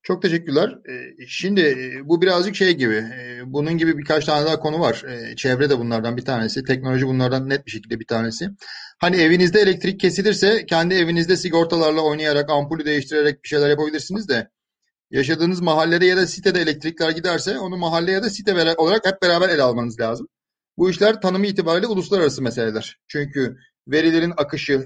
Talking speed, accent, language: 160 wpm, native, Turkish